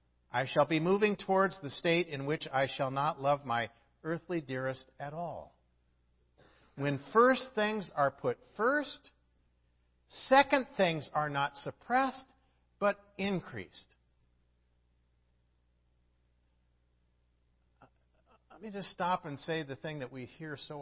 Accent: American